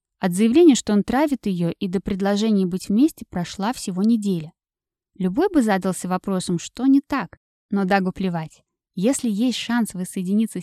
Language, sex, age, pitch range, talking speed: Russian, female, 20-39, 180-235 Hz, 160 wpm